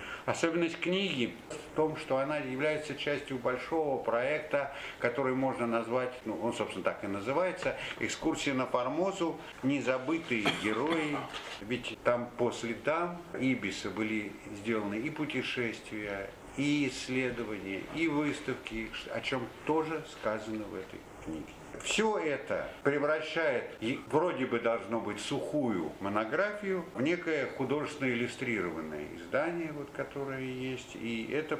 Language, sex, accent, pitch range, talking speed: Russian, male, native, 105-150 Hz, 120 wpm